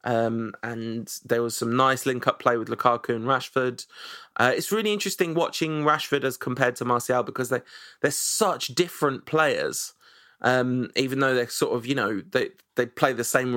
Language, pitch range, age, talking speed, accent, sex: English, 120-140 Hz, 20-39, 180 wpm, British, male